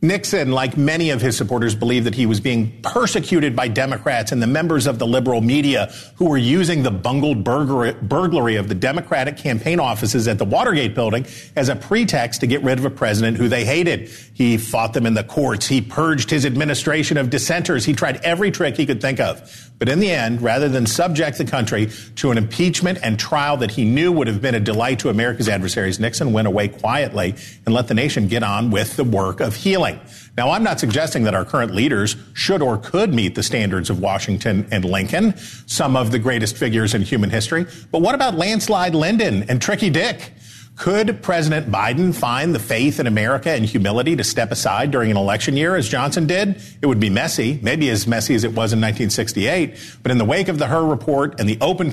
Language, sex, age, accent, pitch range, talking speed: English, male, 50-69, American, 115-155 Hz, 215 wpm